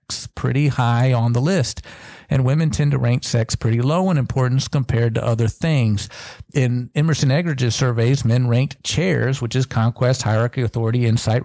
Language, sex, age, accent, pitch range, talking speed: English, male, 50-69, American, 115-145 Hz, 170 wpm